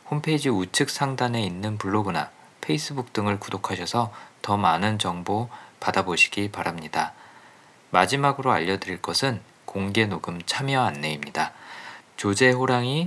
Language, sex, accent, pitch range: Korean, male, native, 95-130 Hz